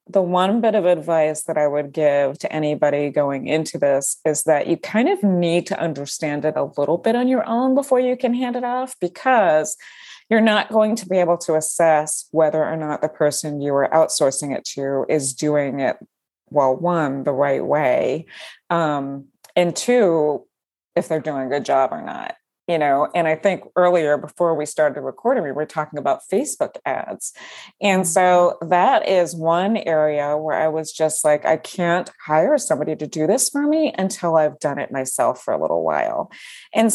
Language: English